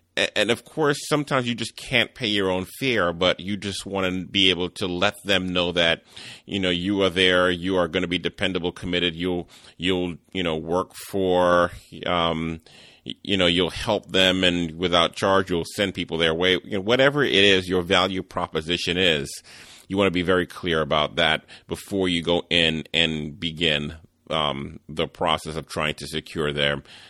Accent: American